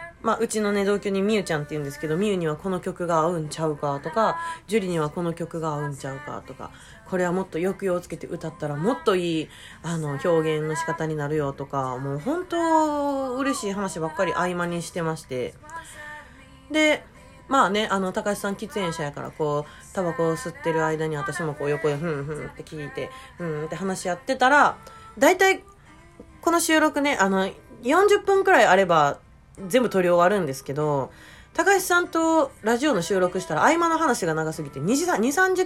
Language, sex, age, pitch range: Japanese, female, 20-39, 155-260 Hz